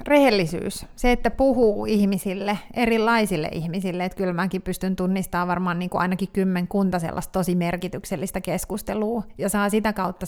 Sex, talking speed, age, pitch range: female, 135 wpm, 30-49, 180-200 Hz